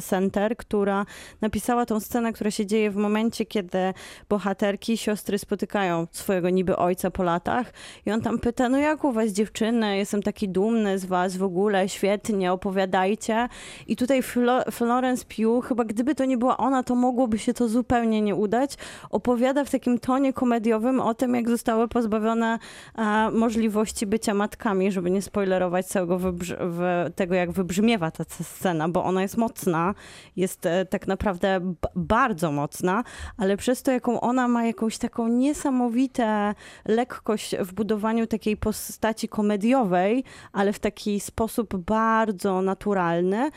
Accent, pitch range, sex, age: native, 195-235 Hz, female, 20-39